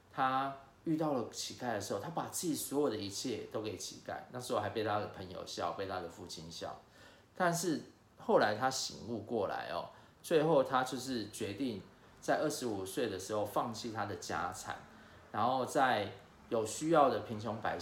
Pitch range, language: 100-130 Hz, Chinese